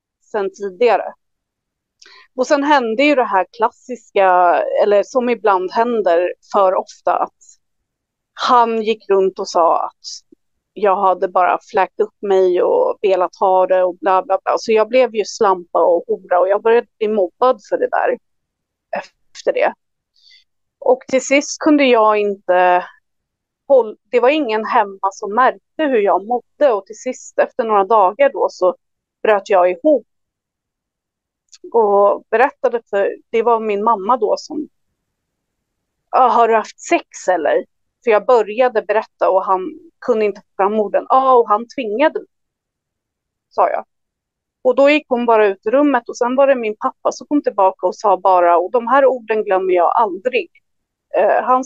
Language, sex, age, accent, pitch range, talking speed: Swedish, female, 30-49, native, 195-275 Hz, 160 wpm